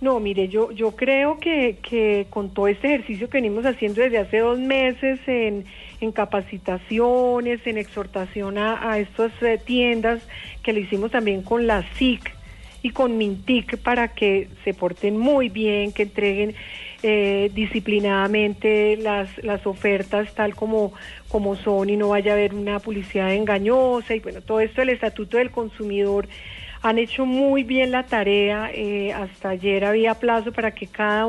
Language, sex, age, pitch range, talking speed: Spanish, female, 40-59, 205-235 Hz, 165 wpm